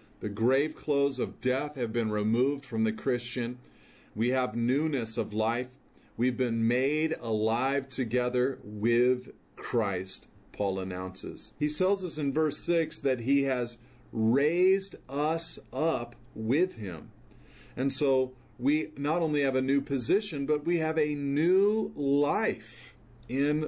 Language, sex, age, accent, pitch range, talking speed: English, male, 40-59, American, 120-150 Hz, 140 wpm